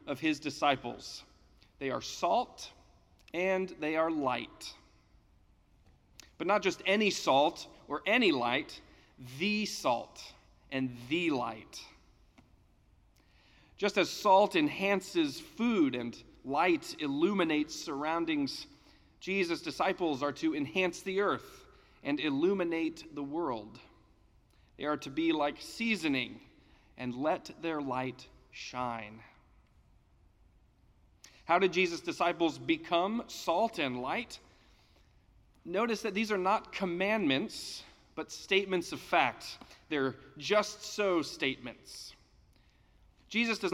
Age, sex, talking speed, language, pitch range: 40-59, male, 105 wpm, English, 130-205 Hz